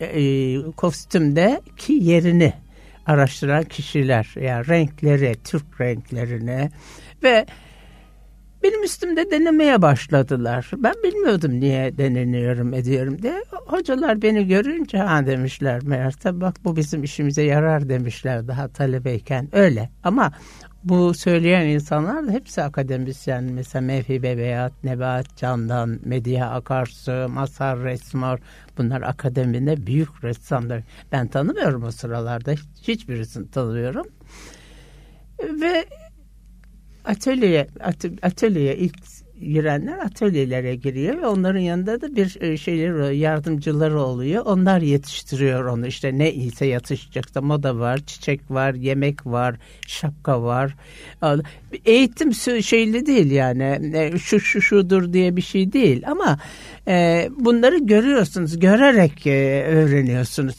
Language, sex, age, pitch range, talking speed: Turkish, male, 60-79, 130-180 Hz, 105 wpm